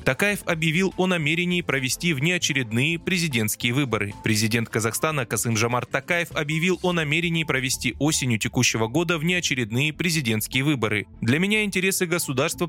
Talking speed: 130 wpm